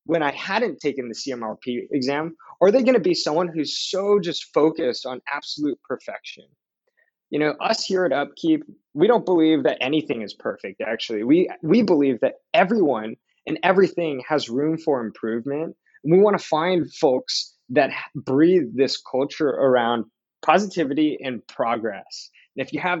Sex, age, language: male, 20-39, English